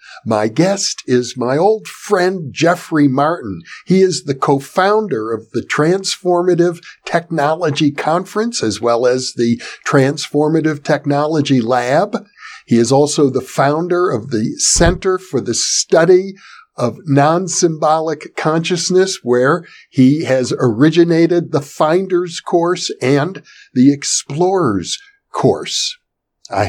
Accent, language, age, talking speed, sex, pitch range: American, English, 60-79, 110 wpm, male, 130-175 Hz